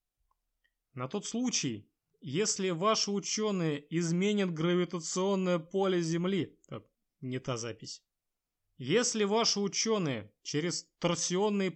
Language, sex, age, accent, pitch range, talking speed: Russian, male, 20-39, native, 135-175 Hz, 90 wpm